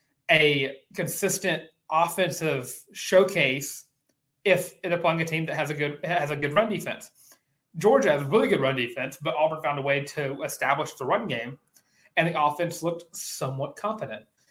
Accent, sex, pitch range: American, male, 135-175 Hz